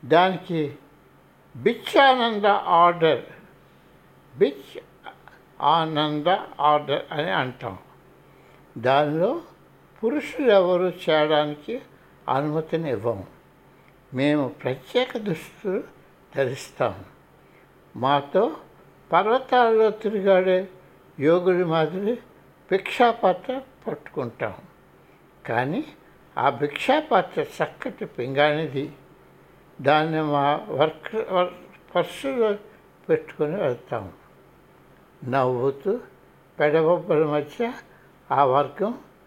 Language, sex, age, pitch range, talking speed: Telugu, male, 60-79, 150-195 Hz, 65 wpm